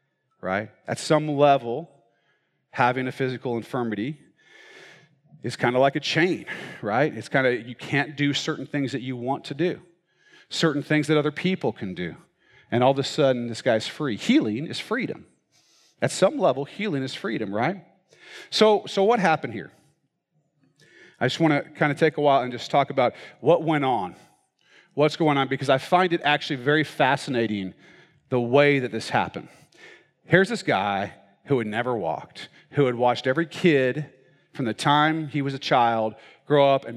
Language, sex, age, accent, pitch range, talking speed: English, male, 40-59, American, 130-155 Hz, 180 wpm